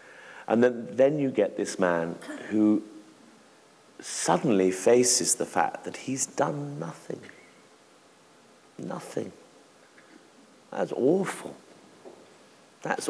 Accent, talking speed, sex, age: British, 90 wpm, male, 50-69